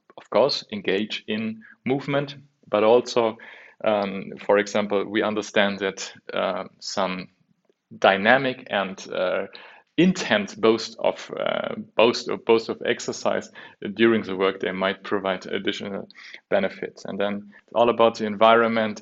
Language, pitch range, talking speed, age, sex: English, 100-120 Hz, 125 wpm, 30-49, male